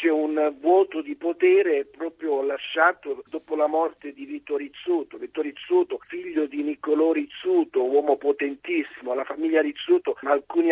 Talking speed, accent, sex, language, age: 130 wpm, native, male, Italian, 50-69